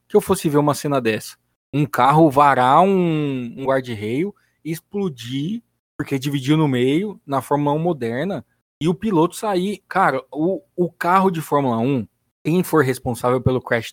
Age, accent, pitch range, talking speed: 20-39, Brazilian, 130-165 Hz, 170 wpm